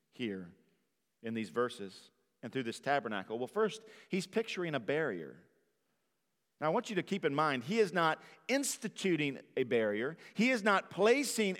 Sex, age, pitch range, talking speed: male, 40-59, 140-205 Hz, 165 wpm